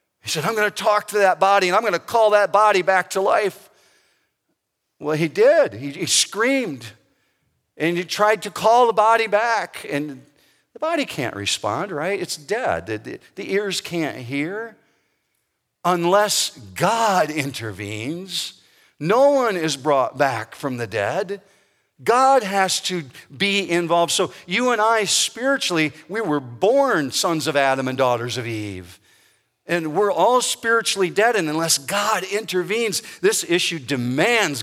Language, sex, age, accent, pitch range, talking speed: English, male, 50-69, American, 135-200 Hz, 155 wpm